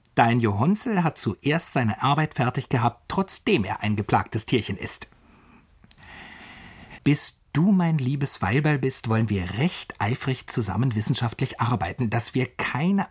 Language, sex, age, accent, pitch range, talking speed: German, male, 50-69, German, 115-165 Hz, 135 wpm